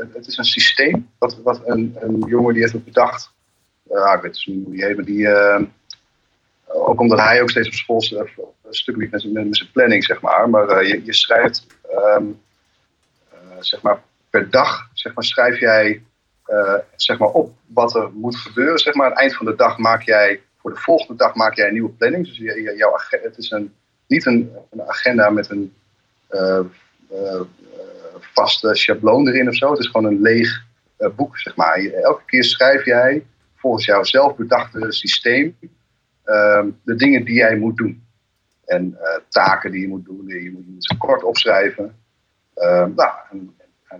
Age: 30-49